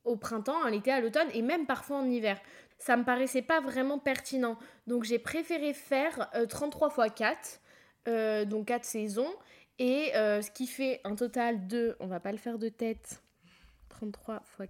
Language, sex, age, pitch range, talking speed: French, female, 10-29, 225-270 Hz, 190 wpm